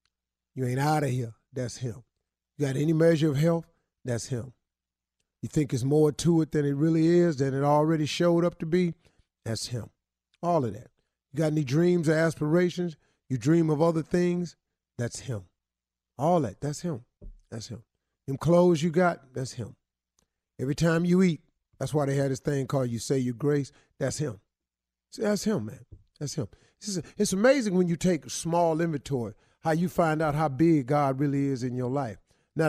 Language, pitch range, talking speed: English, 115-170 Hz, 190 wpm